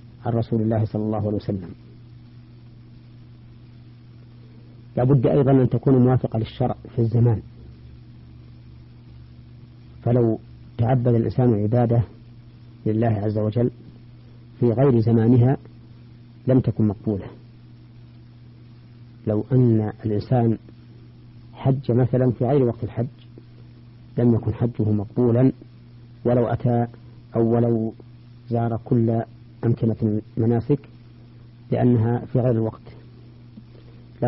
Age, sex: 50-69, female